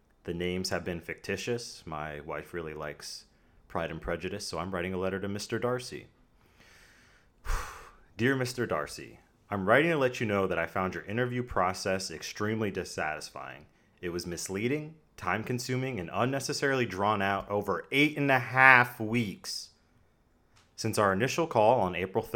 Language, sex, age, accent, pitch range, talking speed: English, male, 30-49, American, 95-125 Hz, 155 wpm